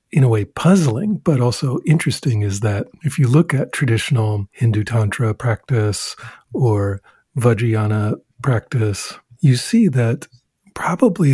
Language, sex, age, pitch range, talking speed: English, male, 50-69, 115-160 Hz, 125 wpm